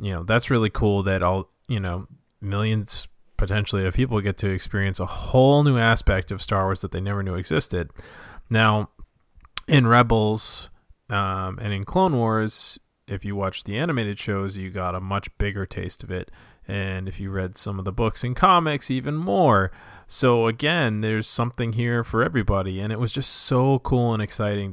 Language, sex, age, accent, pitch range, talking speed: English, male, 20-39, American, 95-120 Hz, 185 wpm